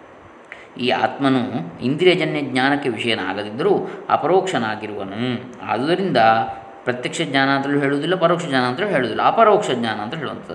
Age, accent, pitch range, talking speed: 20-39, native, 125-170 Hz, 110 wpm